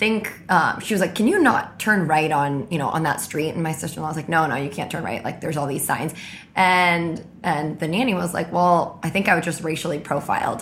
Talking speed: 260 wpm